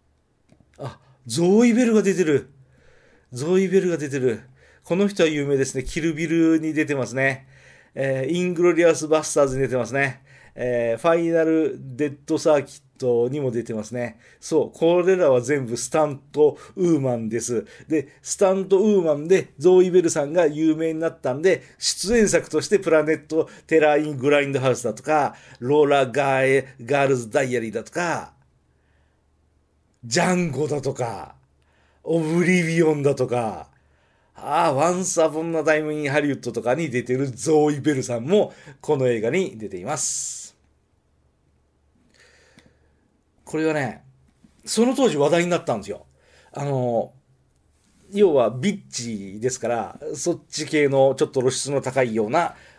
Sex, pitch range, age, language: male, 125-165 Hz, 50-69, Japanese